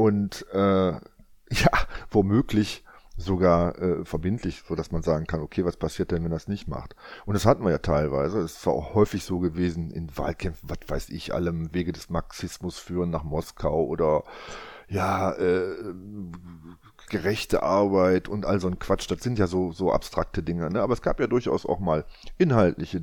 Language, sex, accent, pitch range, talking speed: German, male, German, 80-100 Hz, 180 wpm